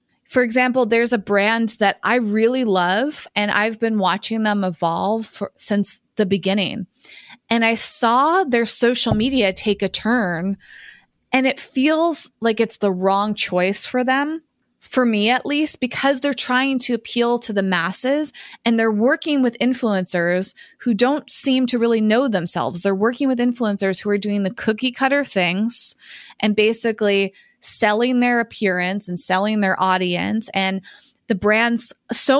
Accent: American